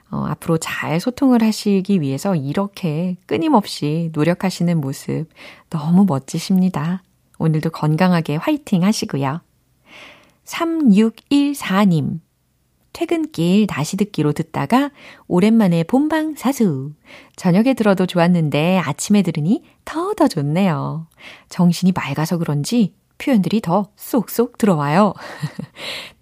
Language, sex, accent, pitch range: Korean, female, native, 155-215 Hz